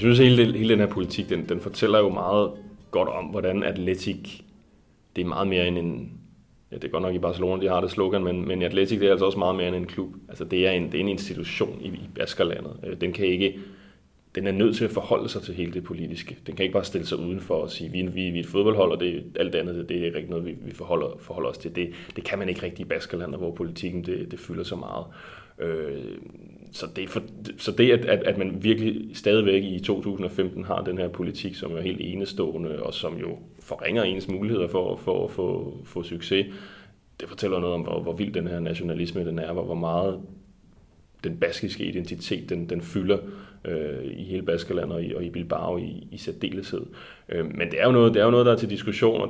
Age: 30-49